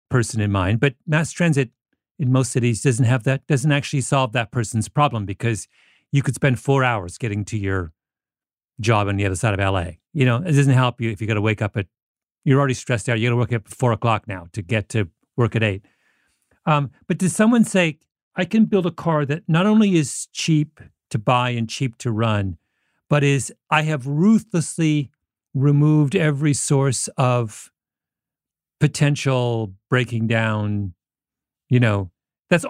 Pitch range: 115-170 Hz